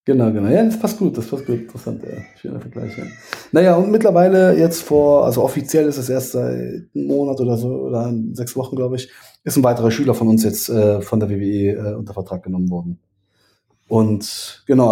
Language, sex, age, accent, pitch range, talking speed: German, male, 20-39, German, 105-140 Hz, 205 wpm